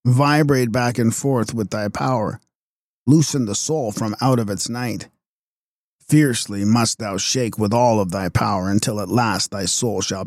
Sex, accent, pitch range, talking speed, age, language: male, American, 105-130 Hz, 175 wpm, 40-59, English